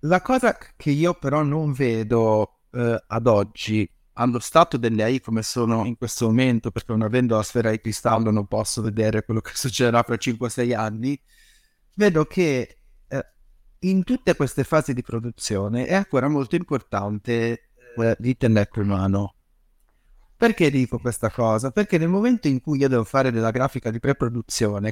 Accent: native